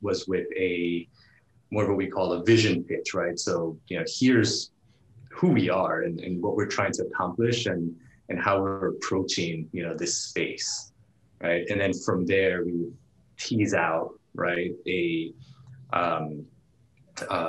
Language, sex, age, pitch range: English, male, 20-39, 90-115 Hz